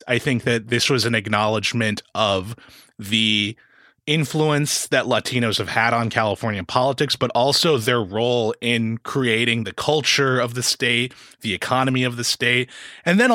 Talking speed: 155 wpm